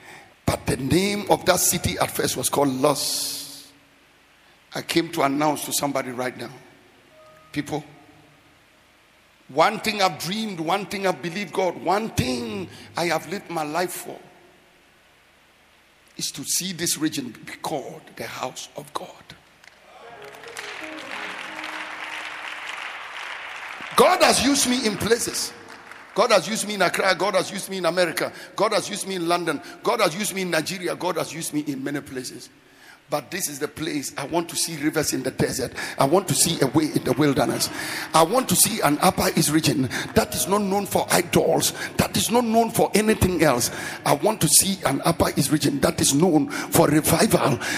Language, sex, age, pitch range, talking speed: English, male, 60-79, 150-195 Hz, 175 wpm